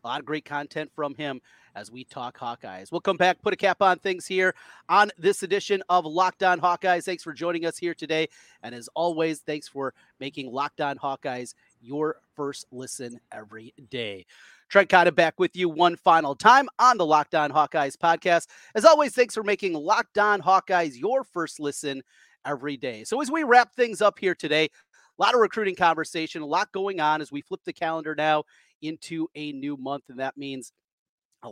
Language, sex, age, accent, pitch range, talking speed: English, male, 30-49, American, 145-185 Hz, 200 wpm